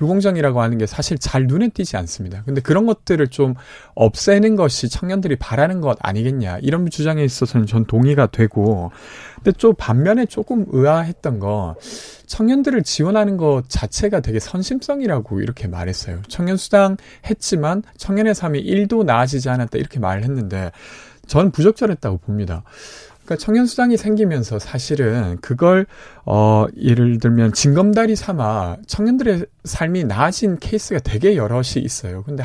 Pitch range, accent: 115-190 Hz, native